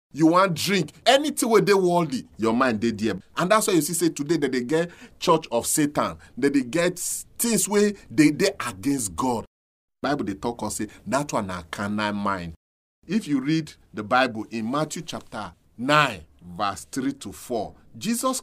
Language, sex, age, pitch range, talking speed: English, male, 40-59, 110-170 Hz, 185 wpm